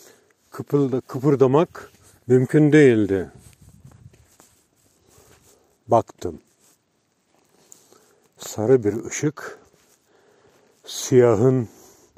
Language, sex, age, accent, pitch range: Turkish, male, 50-69, native, 105-135 Hz